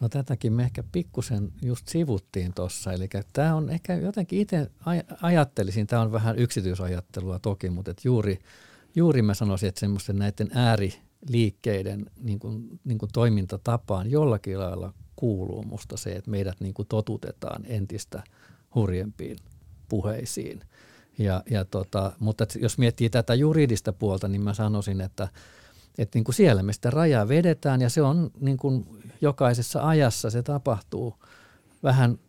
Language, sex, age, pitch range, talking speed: Finnish, male, 50-69, 100-130 Hz, 135 wpm